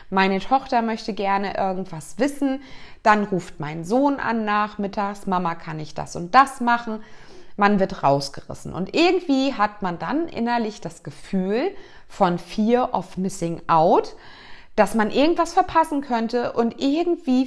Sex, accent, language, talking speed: female, German, German, 145 wpm